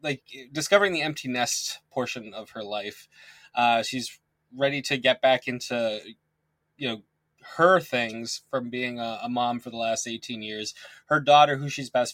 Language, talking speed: English, 175 wpm